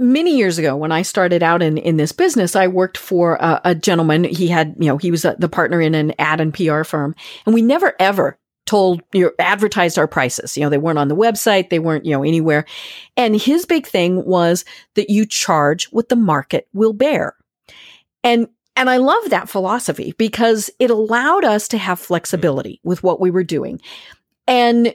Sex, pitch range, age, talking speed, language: female, 170-245 Hz, 40-59, 205 wpm, English